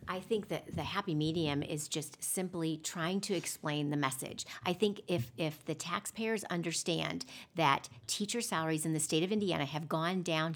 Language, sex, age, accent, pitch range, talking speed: English, female, 40-59, American, 155-195 Hz, 180 wpm